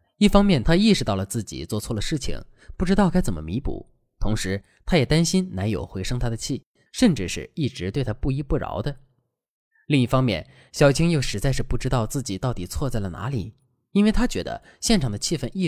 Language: Chinese